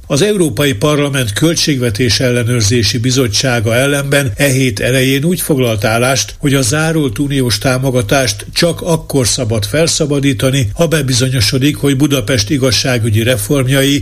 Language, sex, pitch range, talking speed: Hungarian, male, 120-145 Hz, 115 wpm